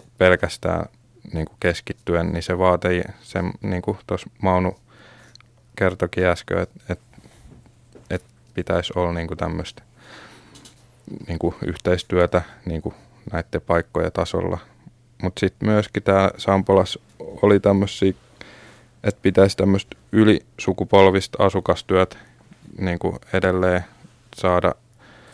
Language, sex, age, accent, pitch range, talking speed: Finnish, male, 20-39, native, 90-105 Hz, 90 wpm